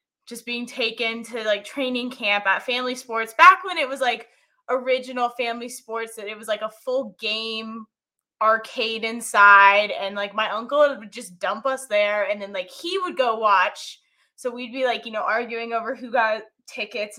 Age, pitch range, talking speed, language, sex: 20-39, 205-250 Hz, 190 wpm, English, female